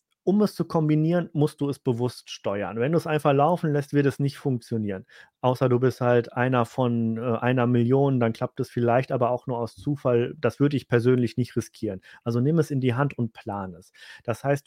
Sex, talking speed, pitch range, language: male, 215 wpm, 130-150 Hz, German